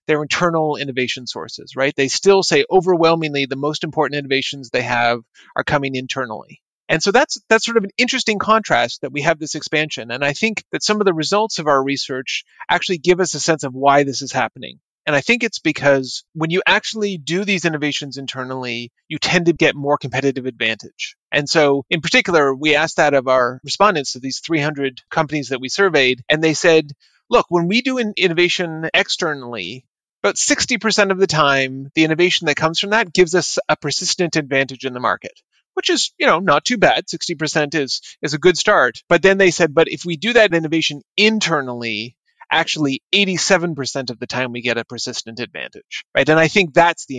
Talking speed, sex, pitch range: 200 wpm, male, 135-180 Hz